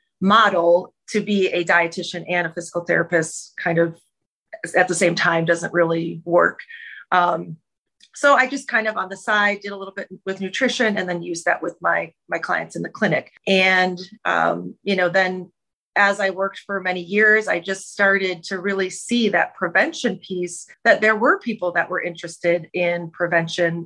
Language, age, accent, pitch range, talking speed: English, 30-49, American, 175-200 Hz, 185 wpm